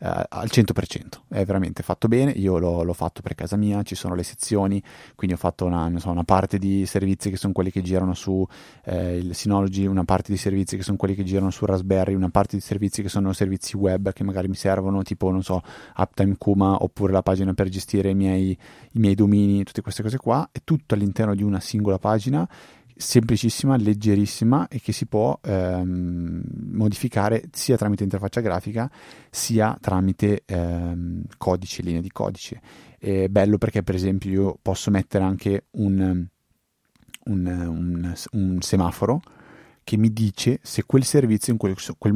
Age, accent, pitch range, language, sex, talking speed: 30-49, native, 95-105 Hz, Italian, male, 180 wpm